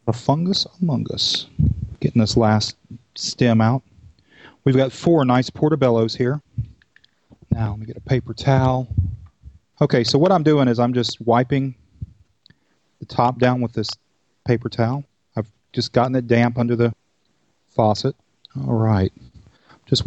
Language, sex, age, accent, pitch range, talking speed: English, male, 30-49, American, 110-130 Hz, 145 wpm